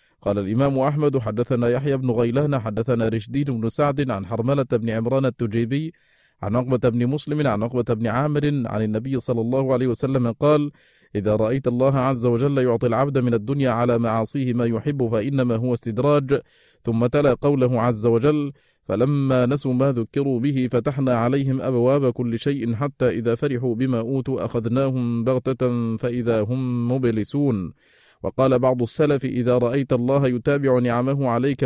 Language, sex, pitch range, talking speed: Arabic, male, 120-140 Hz, 155 wpm